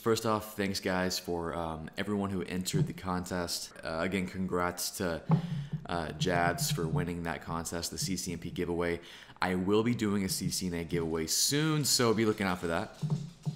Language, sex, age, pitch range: English, male, 20-39, 85-100 Hz